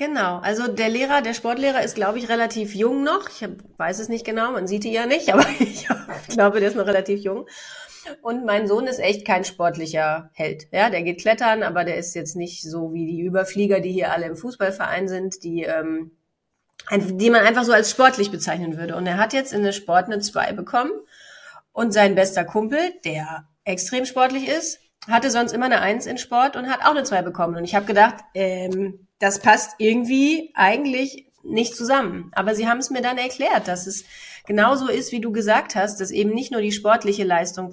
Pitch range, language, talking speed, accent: 195-235 Hz, German, 210 wpm, German